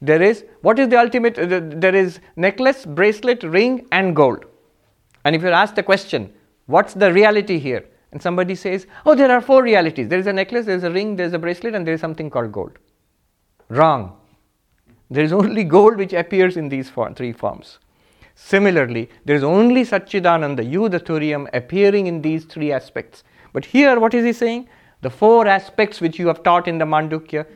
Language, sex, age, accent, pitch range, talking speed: English, male, 50-69, Indian, 140-205 Hz, 200 wpm